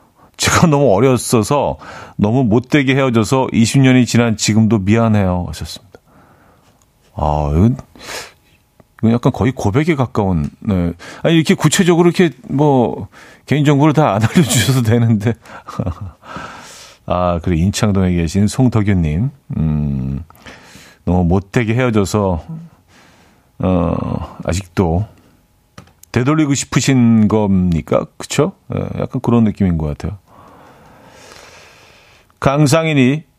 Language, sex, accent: Korean, male, native